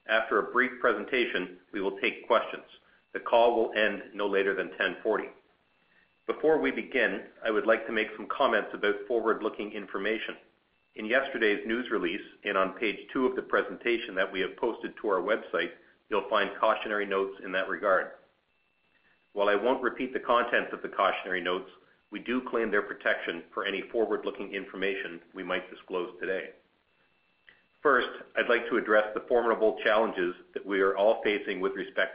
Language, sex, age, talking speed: English, male, 50-69, 170 wpm